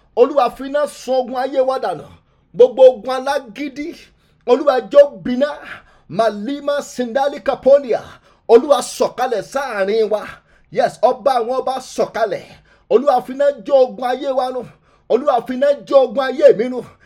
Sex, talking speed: male, 115 wpm